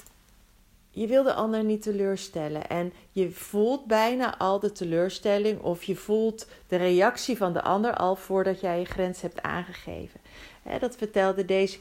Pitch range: 180-225 Hz